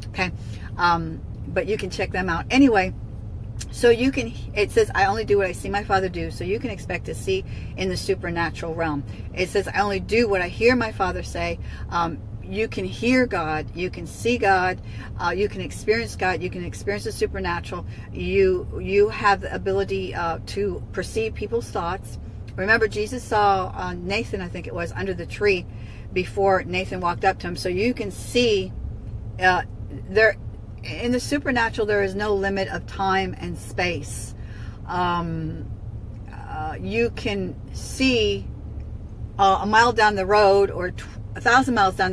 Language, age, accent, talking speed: English, 50-69, American, 175 wpm